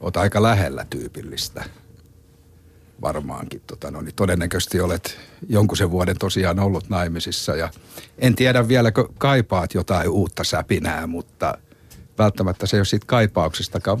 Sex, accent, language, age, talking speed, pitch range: male, native, Finnish, 60-79, 135 wpm, 90-115 Hz